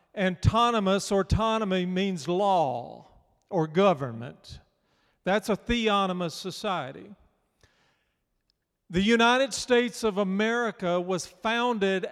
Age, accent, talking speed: 50-69, American, 85 wpm